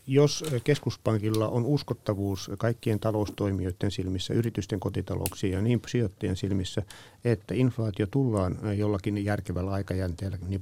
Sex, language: male, Finnish